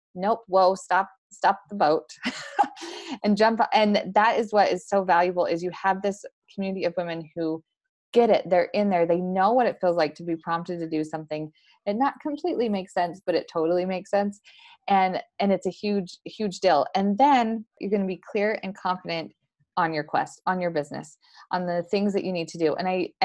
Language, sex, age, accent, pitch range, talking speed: English, female, 20-39, American, 170-220 Hz, 210 wpm